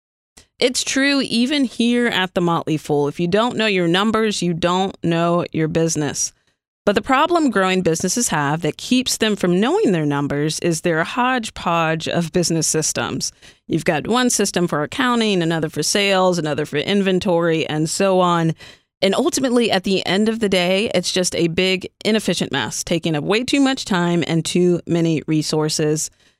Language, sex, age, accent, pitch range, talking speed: English, female, 30-49, American, 165-210 Hz, 175 wpm